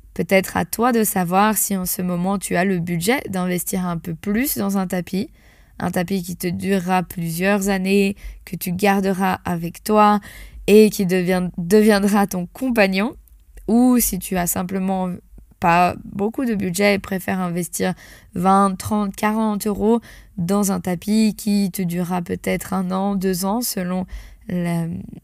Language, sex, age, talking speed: French, female, 20-39, 160 wpm